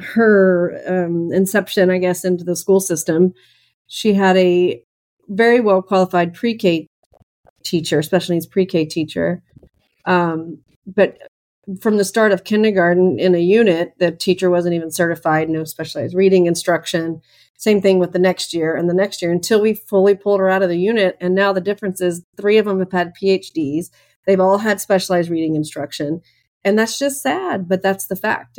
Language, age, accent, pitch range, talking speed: English, 40-59, American, 170-195 Hz, 175 wpm